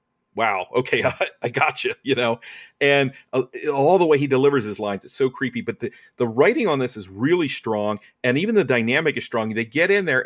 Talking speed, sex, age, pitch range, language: 230 wpm, male, 40-59, 115-140 Hz, English